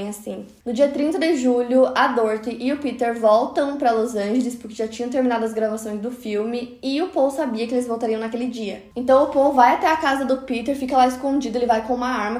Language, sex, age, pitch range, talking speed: Portuguese, female, 10-29, 220-255 Hz, 235 wpm